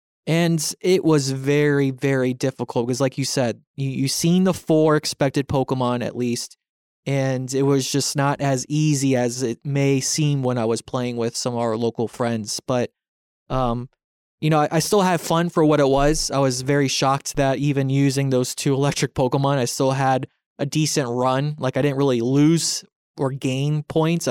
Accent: American